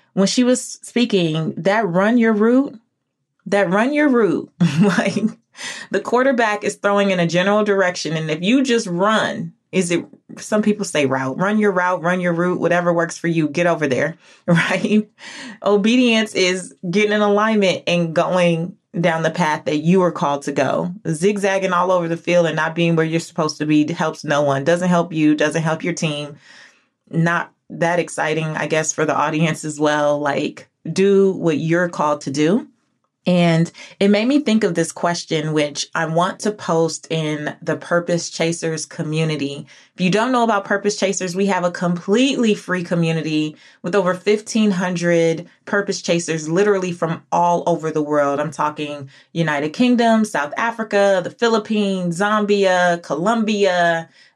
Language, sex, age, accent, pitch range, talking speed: English, female, 30-49, American, 160-205 Hz, 170 wpm